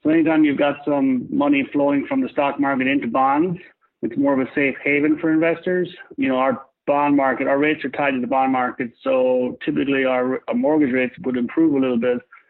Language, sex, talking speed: English, male, 210 wpm